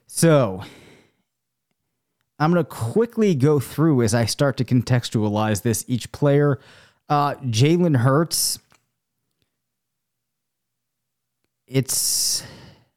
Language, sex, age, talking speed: English, male, 30-49, 90 wpm